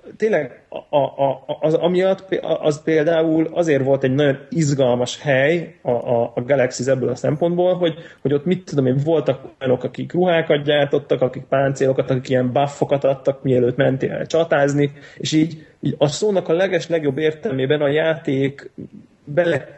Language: Hungarian